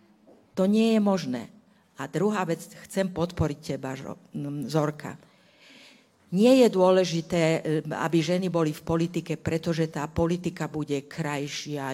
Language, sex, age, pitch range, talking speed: Slovak, female, 50-69, 150-200 Hz, 120 wpm